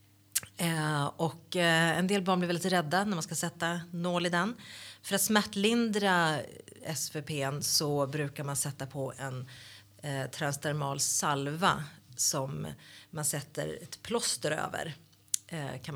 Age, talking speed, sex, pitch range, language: 30-49, 140 wpm, female, 140-170 Hz, Swedish